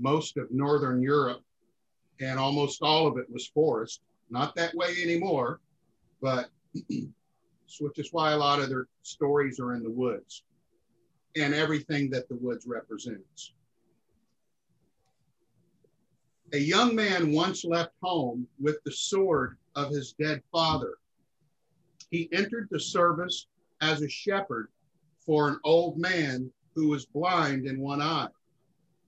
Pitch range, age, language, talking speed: 135-165 Hz, 50-69, English, 130 wpm